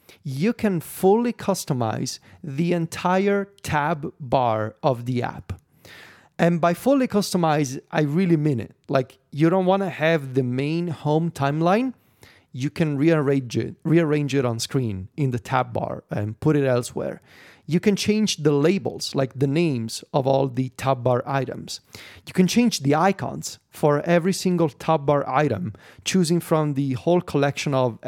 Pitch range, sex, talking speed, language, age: 135-175 Hz, male, 160 wpm, English, 30-49